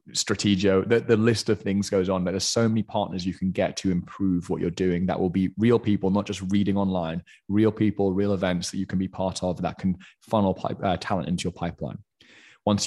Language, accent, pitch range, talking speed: English, British, 95-110 Hz, 235 wpm